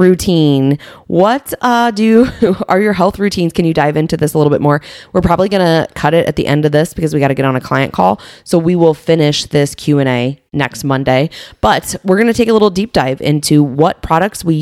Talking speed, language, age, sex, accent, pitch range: 240 wpm, English, 20-39, female, American, 140-185 Hz